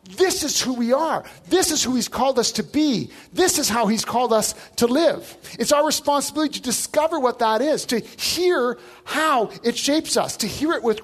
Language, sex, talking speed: English, male, 210 wpm